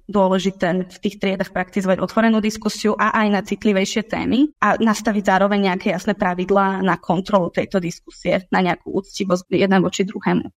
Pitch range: 190-215 Hz